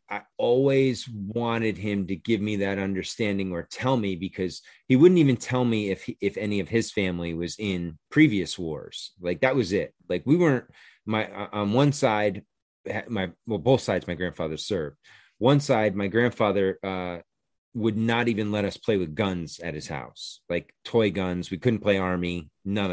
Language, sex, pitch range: English, male, 90-115 Hz